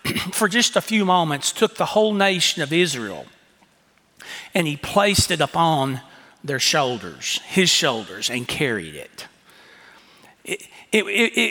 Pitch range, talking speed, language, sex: 145-190 Hz, 130 wpm, English, male